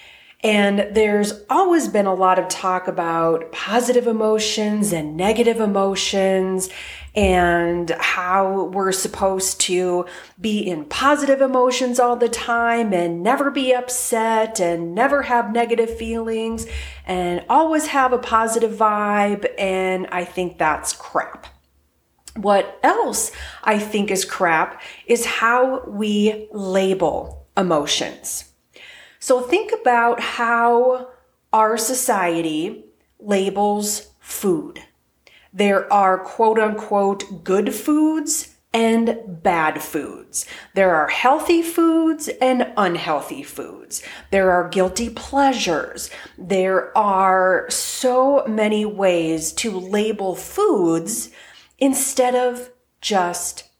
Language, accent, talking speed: English, American, 105 wpm